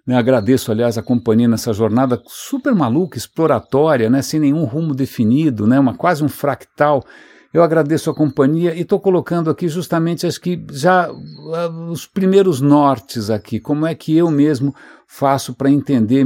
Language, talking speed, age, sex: English, 165 wpm, 60-79, male